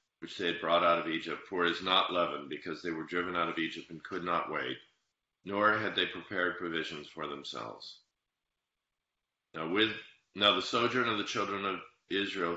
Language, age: English, 40-59